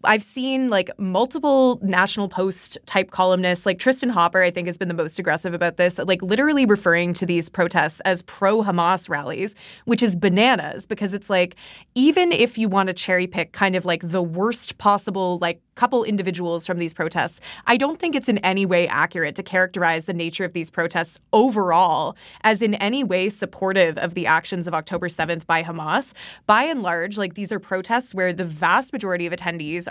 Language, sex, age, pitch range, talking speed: English, female, 20-39, 175-210 Hz, 190 wpm